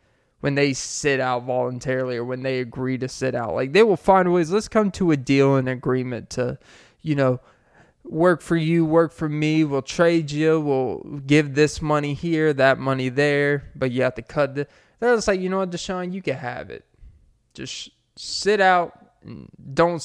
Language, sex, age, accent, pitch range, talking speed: English, male, 20-39, American, 130-175 Hz, 200 wpm